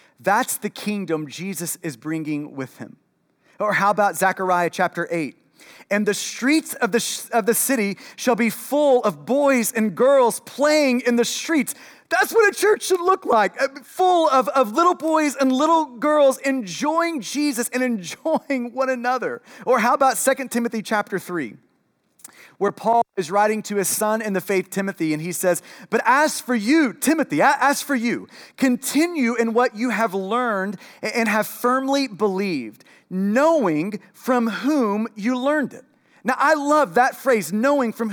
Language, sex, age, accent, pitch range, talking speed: English, male, 30-49, American, 200-270 Hz, 165 wpm